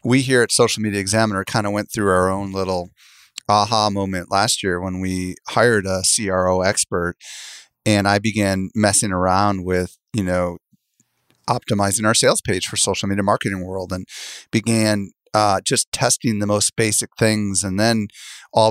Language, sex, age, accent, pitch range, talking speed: English, male, 30-49, American, 95-110 Hz, 165 wpm